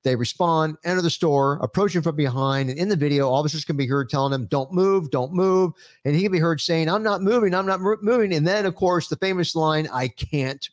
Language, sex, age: English, male, 50-69